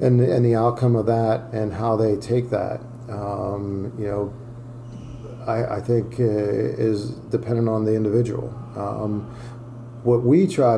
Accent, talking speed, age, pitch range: American, 150 wpm, 40-59, 110-120 Hz